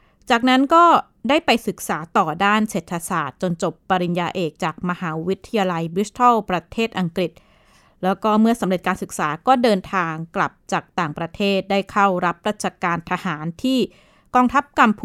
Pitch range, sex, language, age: 180-220 Hz, female, Thai, 20-39